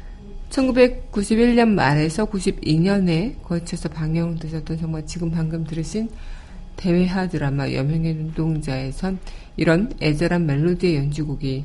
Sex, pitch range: female, 145-185 Hz